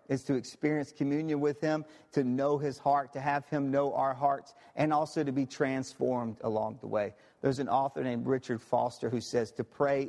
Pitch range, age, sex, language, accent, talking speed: 125-170 Hz, 40-59, male, English, American, 200 wpm